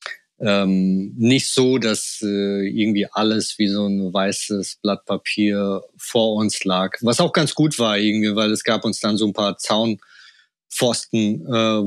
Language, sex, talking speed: German, male, 160 wpm